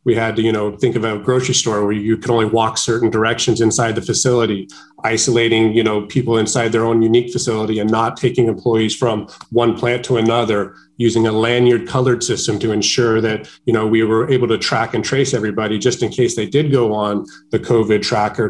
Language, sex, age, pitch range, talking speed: English, male, 30-49, 115-125 Hz, 215 wpm